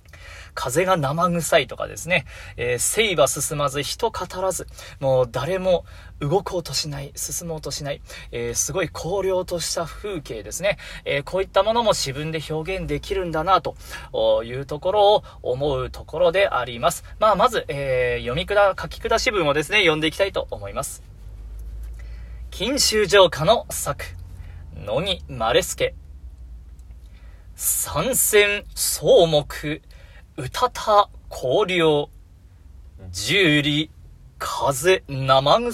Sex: male